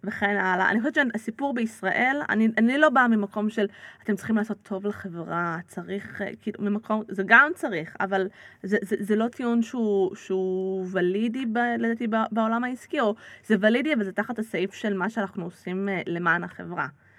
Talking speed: 165 wpm